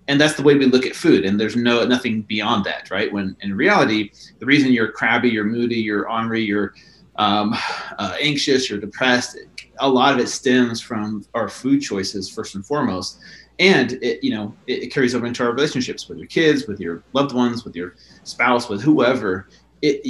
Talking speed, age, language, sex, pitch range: 205 wpm, 30-49, English, male, 105-130 Hz